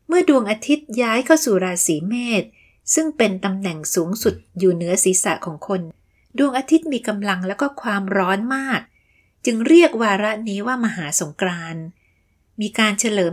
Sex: female